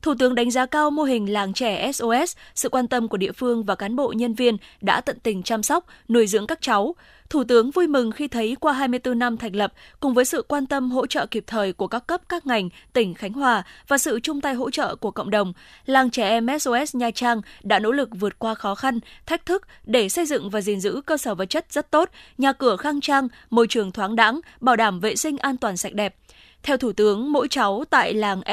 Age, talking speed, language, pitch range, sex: 20-39, 245 wpm, Vietnamese, 215-275 Hz, female